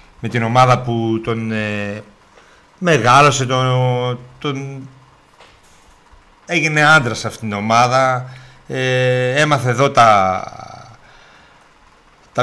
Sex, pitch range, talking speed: male, 115-155 Hz, 90 wpm